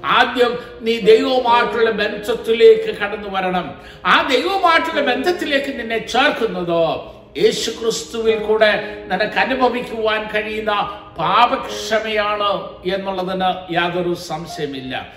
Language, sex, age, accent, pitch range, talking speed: Malayalam, male, 60-79, native, 195-255 Hz, 80 wpm